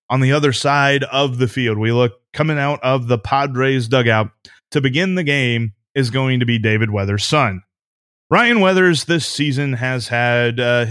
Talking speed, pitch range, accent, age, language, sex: 180 wpm, 115-145 Hz, American, 20-39, English, male